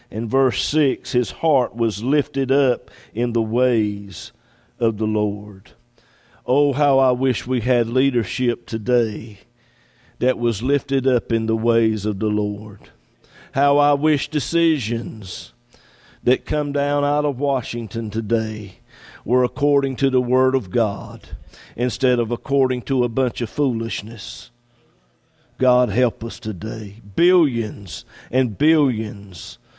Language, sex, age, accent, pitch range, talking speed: English, male, 50-69, American, 110-130 Hz, 130 wpm